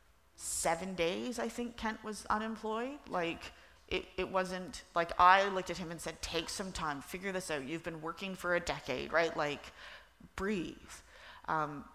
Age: 30-49